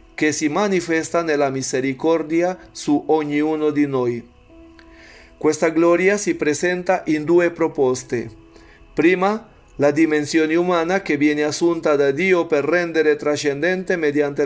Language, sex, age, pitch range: Italian, male, 40-59, 140-175 Hz